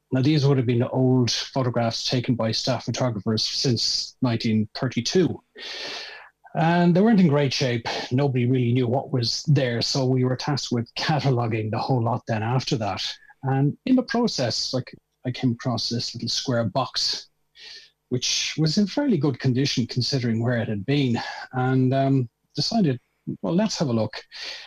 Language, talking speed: English, 170 wpm